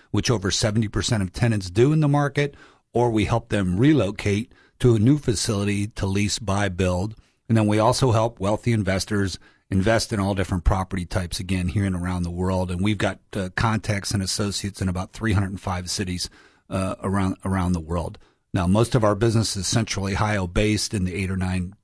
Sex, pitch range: male, 95-110 Hz